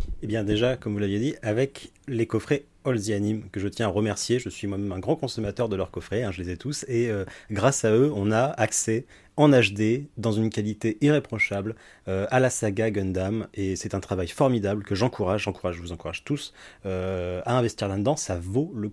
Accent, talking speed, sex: French, 225 wpm, male